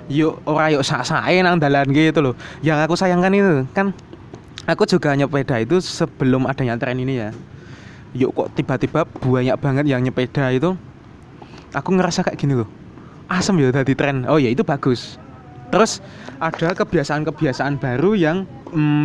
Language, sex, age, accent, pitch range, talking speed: Indonesian, male, 20-39, native, 130-165 Hz, 160 wpm